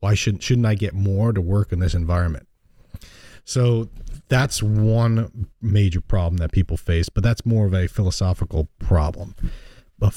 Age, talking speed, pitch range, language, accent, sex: 40-59, 160 wpm, 90-110 Hz, English, American, male